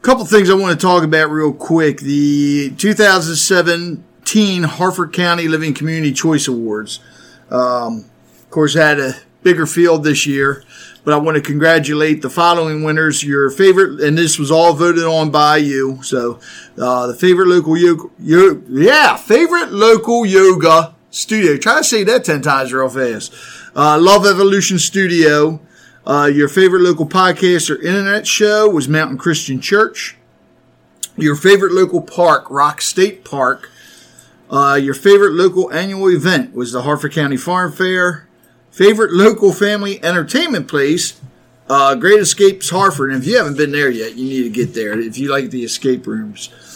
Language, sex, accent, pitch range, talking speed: English, male, American, 140-190 Hz, 160 wpm